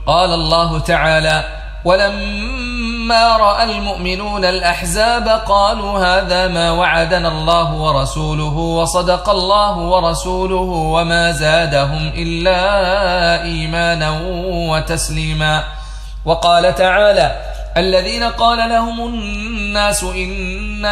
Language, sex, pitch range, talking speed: Arabic, male, 165-195 Hz, 80 wpm